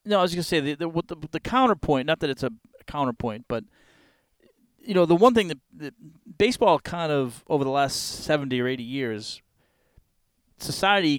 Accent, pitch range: American, 125-160 Hz